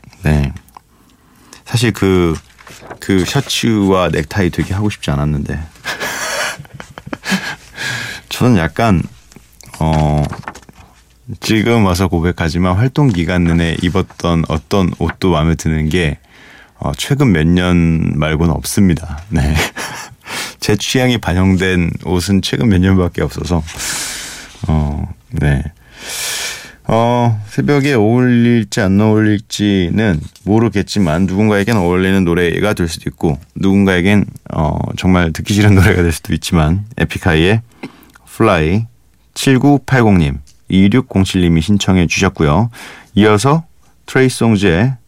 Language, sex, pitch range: Korean, male, 80-110 Hz